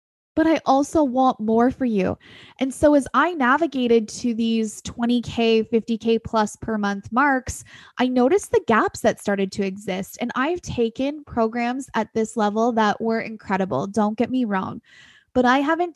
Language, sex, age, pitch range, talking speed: English, female, 20-39, 220-270 Hz, 175 wpm